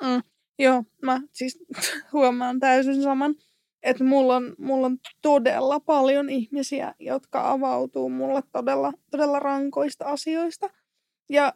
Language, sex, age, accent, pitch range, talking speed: Finnish, female, 20-39, native, 265-300 Hz, 110 wpm